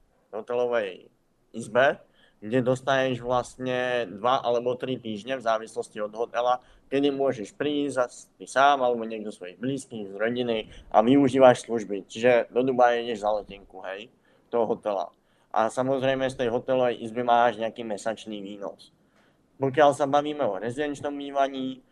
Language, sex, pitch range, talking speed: Slovak, male, 115-135 Hz, 140 wpm